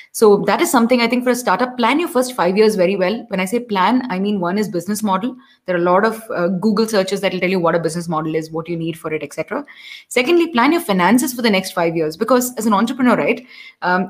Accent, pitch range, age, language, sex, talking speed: Indian, 185-235 Hz, 20-39, English, female, 275 wpm